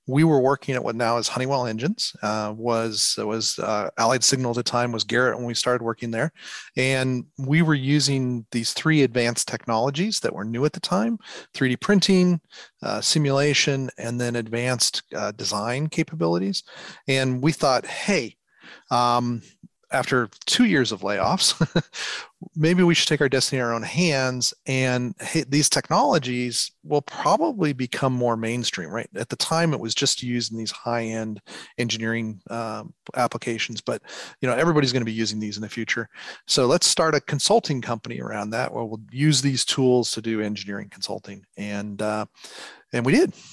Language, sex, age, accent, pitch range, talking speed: English, male, 40-59, American, 115-150 Hz, 170 wpm